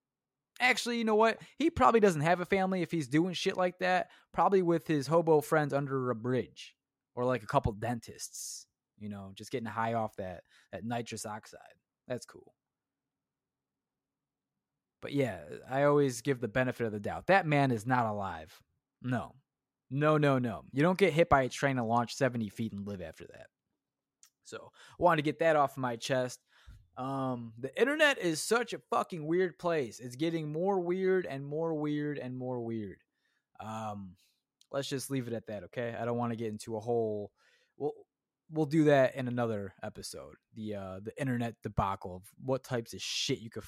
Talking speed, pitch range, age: 190 wpm, 110-155 Hz, 20-39